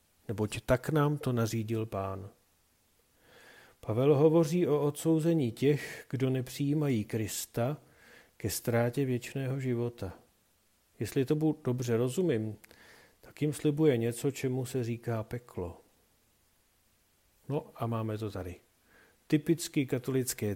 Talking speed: 110 wpm